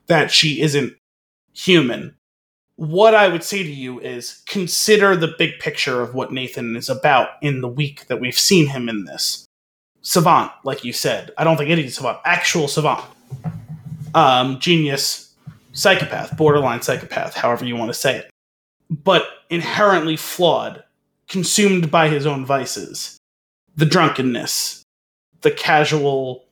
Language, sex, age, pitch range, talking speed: English, male, 30-49, 135-175 Hz, 145 wpm